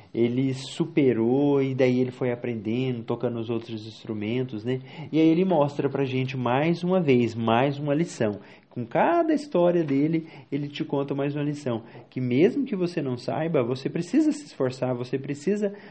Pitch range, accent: 120-180 Hz, Brazilian